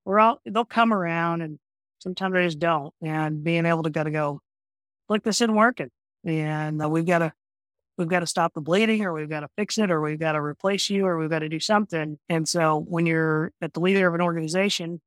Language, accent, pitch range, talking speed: English, American, 155-190 Hz, 215 wpm